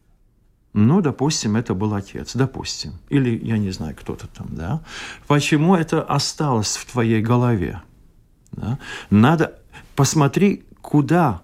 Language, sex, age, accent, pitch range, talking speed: Russian, male, 50-69, native, 105-135 Hz, 115 wpm